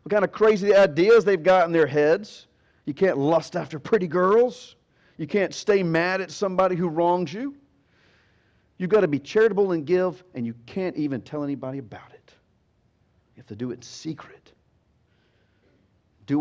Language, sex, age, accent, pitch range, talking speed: English, male, 50-69, American, 130-200 Hz, 175 wpm